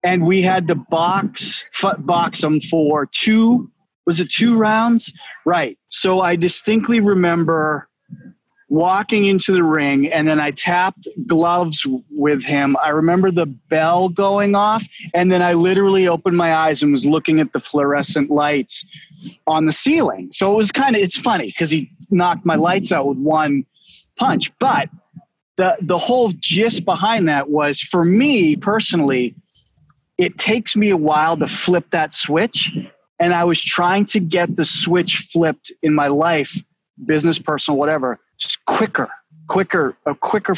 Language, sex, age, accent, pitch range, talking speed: English, male, 30-49, American, 155-195 Hz, 160 wpm